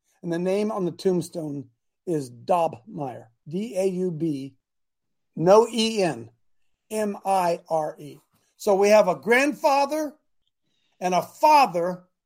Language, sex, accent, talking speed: English, male, American, 100 wpm